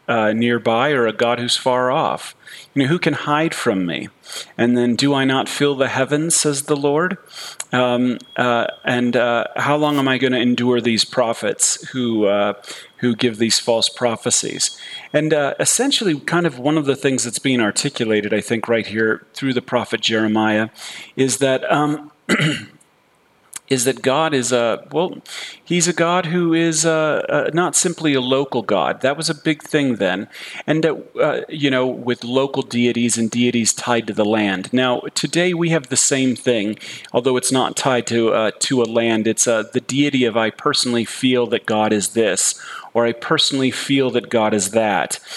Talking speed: 190 wpm